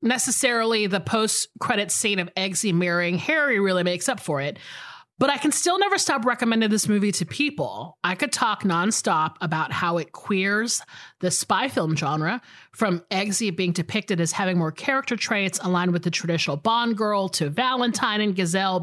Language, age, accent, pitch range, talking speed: English, 30-49, American, 175-245 Hz, 180 wpm